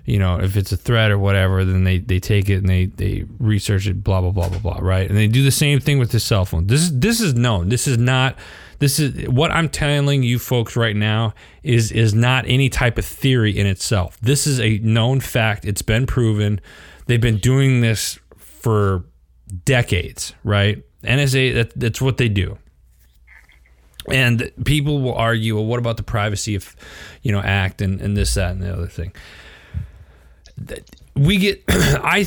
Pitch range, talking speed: 95-120 Hz, 195 wpm